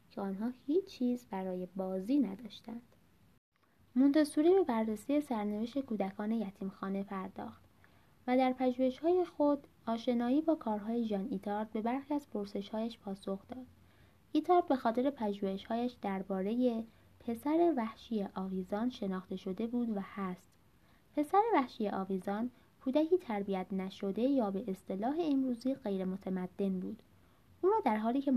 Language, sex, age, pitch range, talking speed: Persian, female, 20-39, 195-265 Hz, 130 wpm